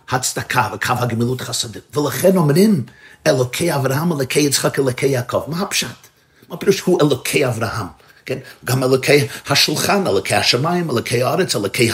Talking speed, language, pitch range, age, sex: 140 wpm, Hebrew, 120-155 Hz, 50-69, male